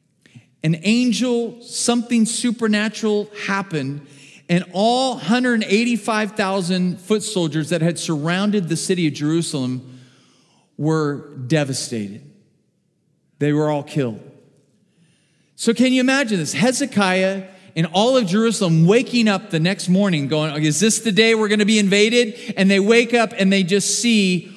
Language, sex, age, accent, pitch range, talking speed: English, male, 40-59, American, 150-230 Hz, 135 wpm